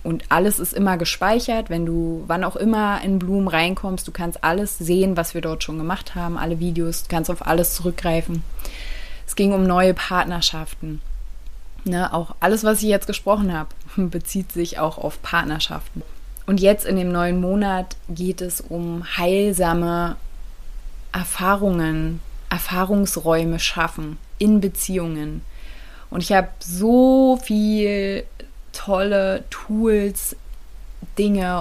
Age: 20-39